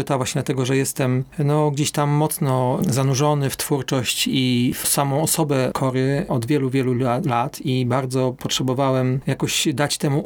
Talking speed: 160 wpm